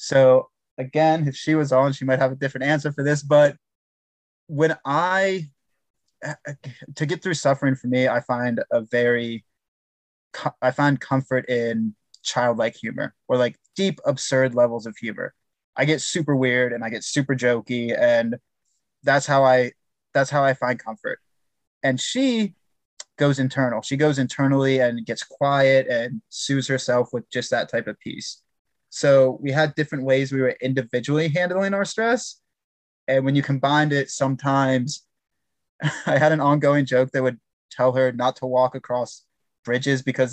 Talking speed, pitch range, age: 160 wpm, 125-150 Hz, 20-39